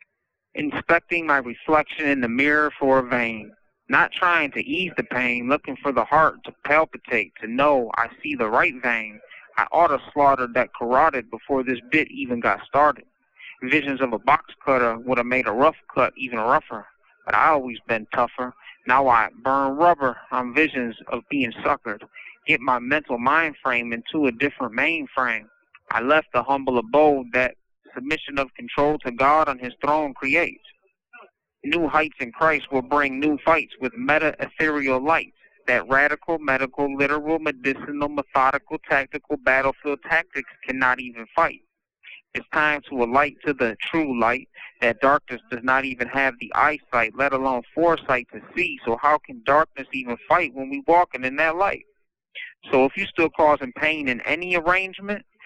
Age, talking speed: 30-49, 170 wpm